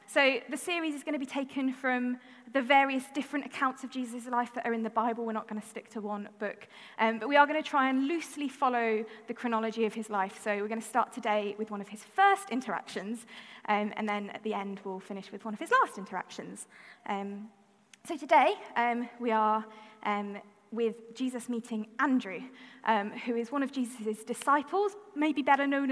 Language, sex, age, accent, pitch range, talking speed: English, female, 10-29, British, 215-275 Hz, 210 wpm